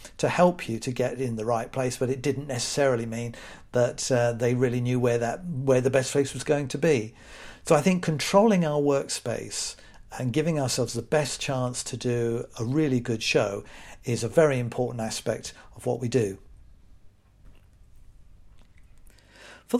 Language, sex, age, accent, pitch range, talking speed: English, male, 50-69, British, 115-140 Hz, 170 wpm